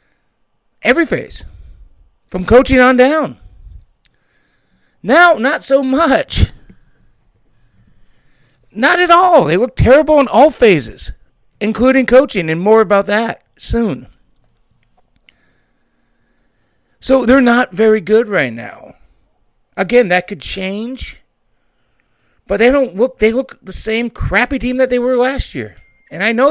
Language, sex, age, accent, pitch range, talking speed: English, male, 40-59, American, 155-255 Hz, 125 wpm